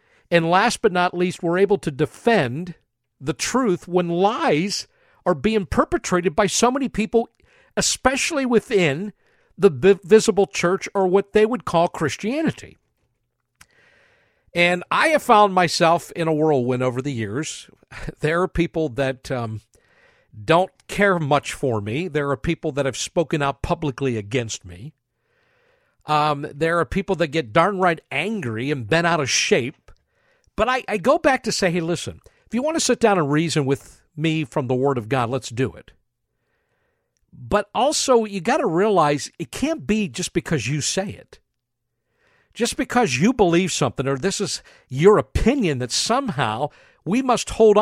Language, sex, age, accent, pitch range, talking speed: English, male, 50-69, American, 145-205 Hz, 165 wpm